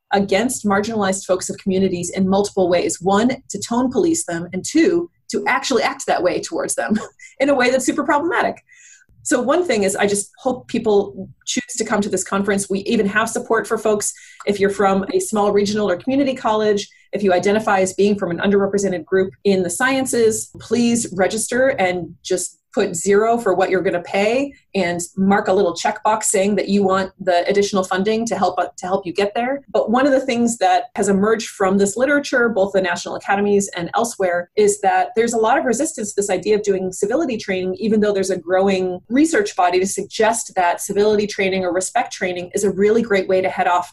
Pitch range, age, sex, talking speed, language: 190-230 Hz, 30-49, female, 210 wpm, English